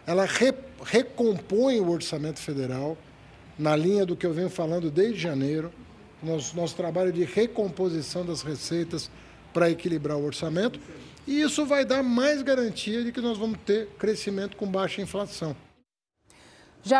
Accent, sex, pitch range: Brazilian, male, 175-235 Hz